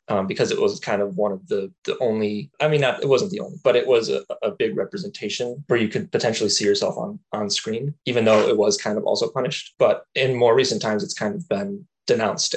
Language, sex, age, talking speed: English, male, 20-39, 250 wpm